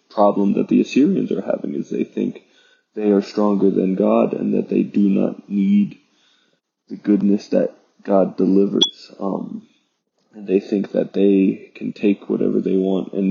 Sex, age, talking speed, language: male, 20-39, 165 wpm, English